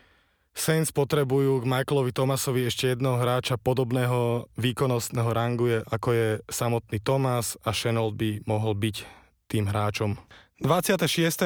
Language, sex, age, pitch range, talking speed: Slovak, male, 20-39, 115-135 Hz, 125 wpm